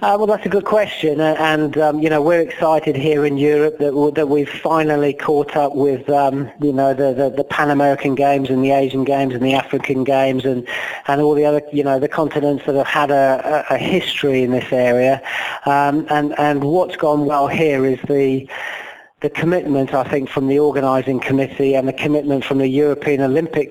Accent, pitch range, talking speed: British, 130-145 Hz, 200 wpm